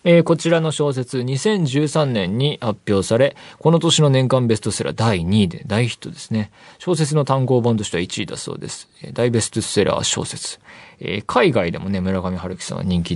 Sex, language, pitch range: male, Japanese, 95-155 Hz